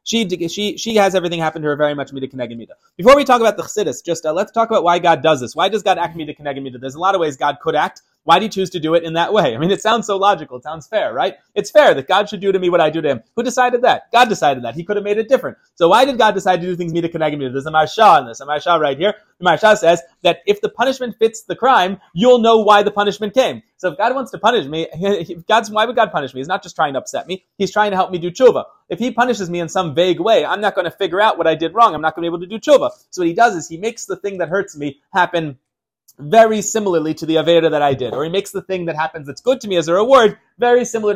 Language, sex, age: English, male, 30-49